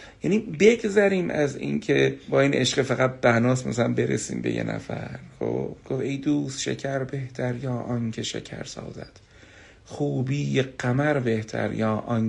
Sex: male